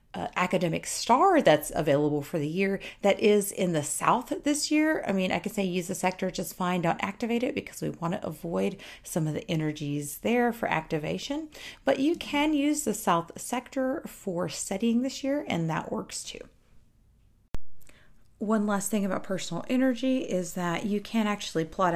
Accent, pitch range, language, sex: American, 160-220 Hz, English, female